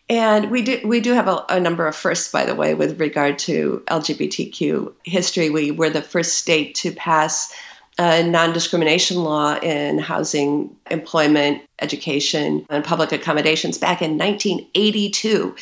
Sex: female